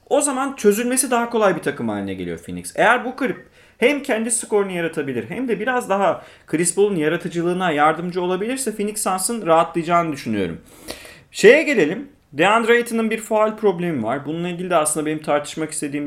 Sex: male